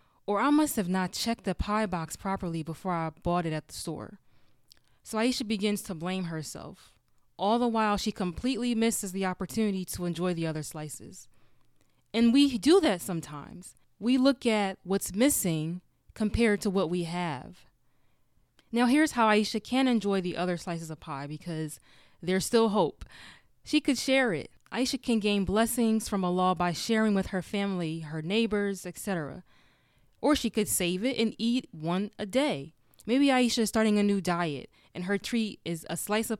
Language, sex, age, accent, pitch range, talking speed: English, female, 20-39, American, 170-225 Hz, 180 wpm